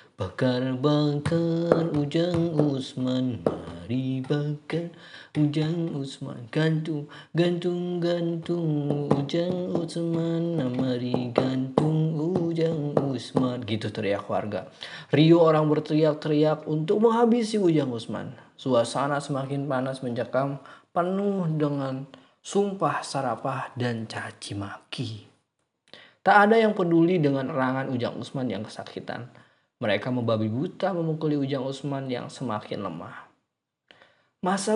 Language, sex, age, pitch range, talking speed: Indonesian, male, 20-39, 130-165 Hz, 100 wpm